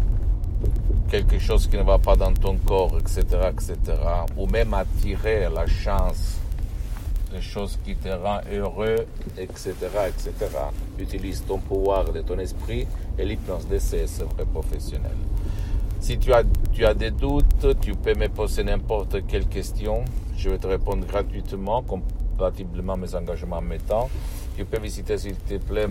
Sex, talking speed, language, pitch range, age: male, 155 wpm, Italian, 85-100 Hz, 60-79